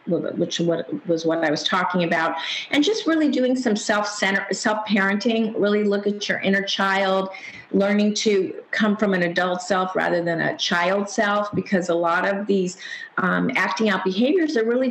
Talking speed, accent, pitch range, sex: 175 wpm, American, 180-230 Hz, female